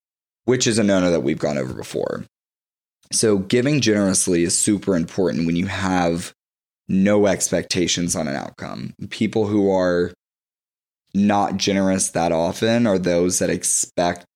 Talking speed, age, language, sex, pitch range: 140 wpm, 20-39, English, male, 85-100 Hz